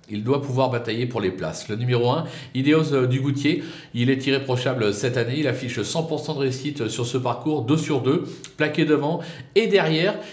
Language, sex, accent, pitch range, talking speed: French, male, French, 130-175 Hz, 185 wpm